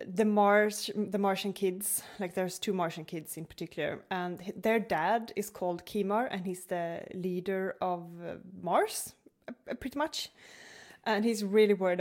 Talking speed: 150 wpm